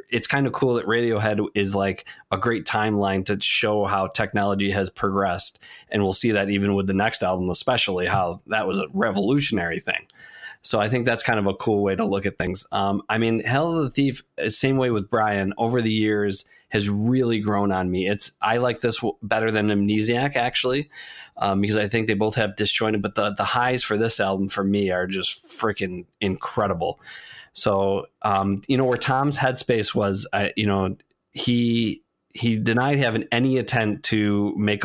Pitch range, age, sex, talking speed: 100-115 Hz, 20-39, male, 195 wpm